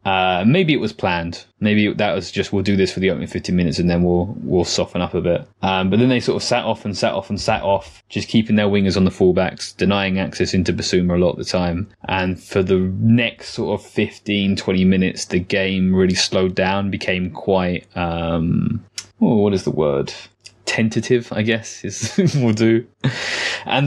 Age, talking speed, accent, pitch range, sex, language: 20-39, 210 wpm, British, 95-110 Hz, male, English